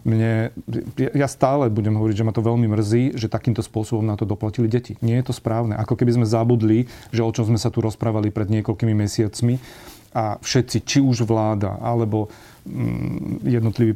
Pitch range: 110-120 Hz